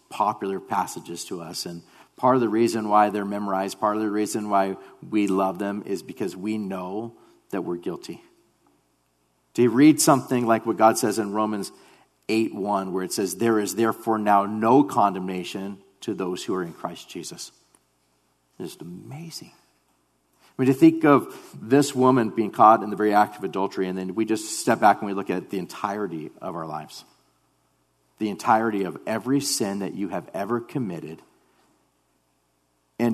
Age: 40-59